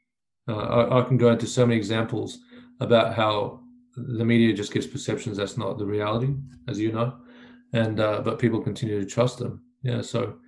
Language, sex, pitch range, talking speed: English, male, 115-130 Hz, 190 wpm